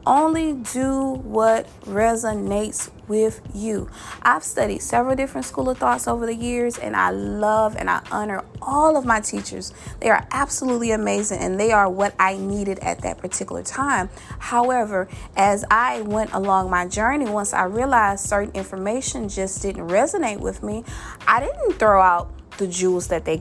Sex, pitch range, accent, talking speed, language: female, 205-265 Hz, American, 165 wpm, English